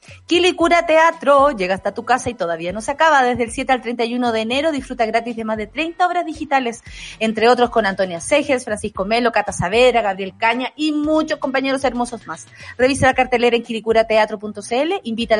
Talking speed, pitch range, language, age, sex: 190 wpm, 210-275 Hz, Spanish, 40-59, female